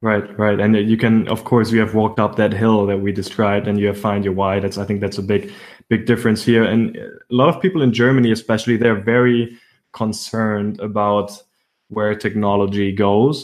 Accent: German